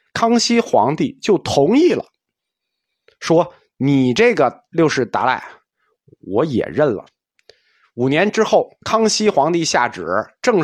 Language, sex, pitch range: Chinese, male, 145-215 Hz